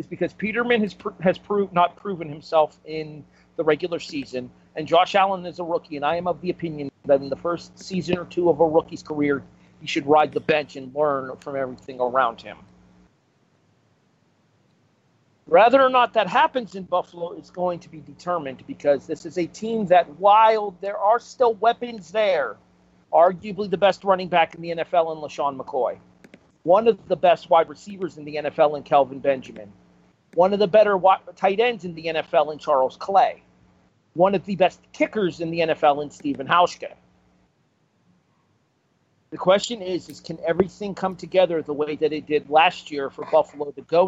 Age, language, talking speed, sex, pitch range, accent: 40-59, English, 185 wpm, male, 140-190 Hz, American